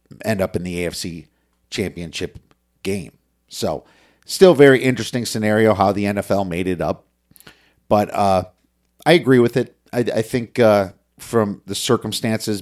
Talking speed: 145 wpm